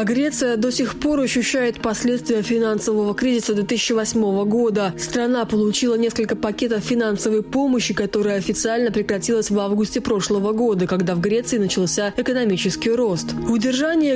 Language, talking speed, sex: Russian, 130 wpm, female